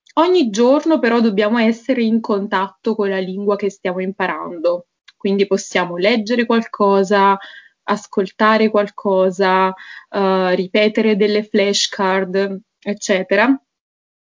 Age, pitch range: 20-39, 195-225 Hz